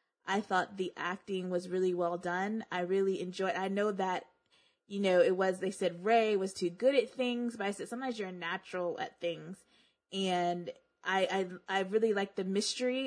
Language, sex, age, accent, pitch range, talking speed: English, female, 20-39, American, 185-230 Hz, 195 wpm